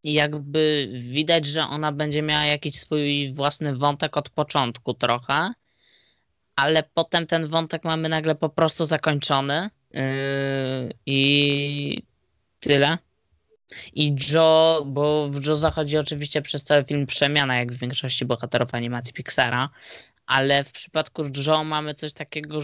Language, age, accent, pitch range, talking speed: Polish, 20-39, native, 140-155 Hz, 125 wpm